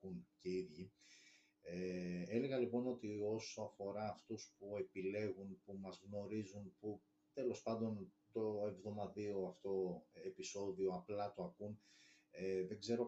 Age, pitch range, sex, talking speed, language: 30-49, 95-120 Hz, male, 105 wpm, Greek